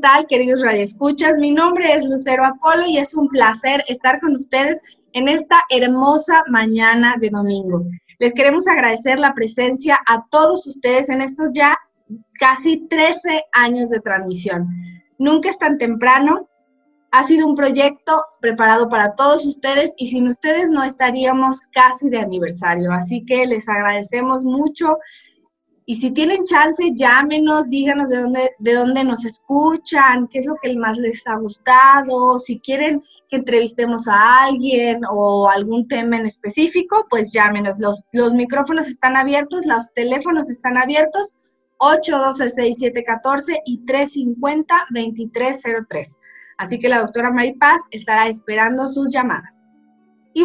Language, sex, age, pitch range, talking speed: Spanish, female, 20-39, 235-300 Hz, 140 wpm